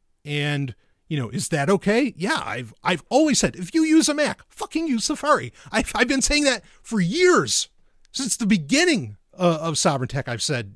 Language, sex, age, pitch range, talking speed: English, male, 30-49, 155-225 Hz, 200 wpm